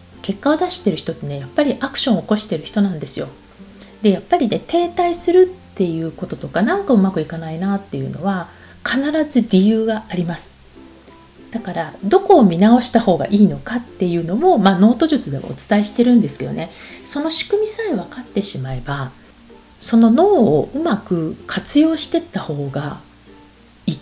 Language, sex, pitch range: Japanese, female, 150-245 Hz